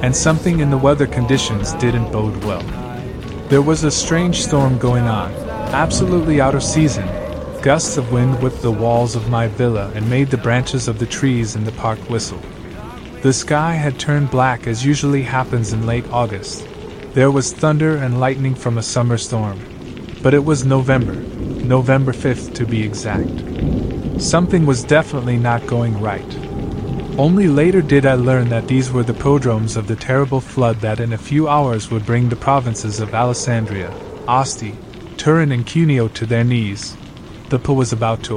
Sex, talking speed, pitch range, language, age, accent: male, 175 wpm, 115-140 Hz, Italian, 30-49, American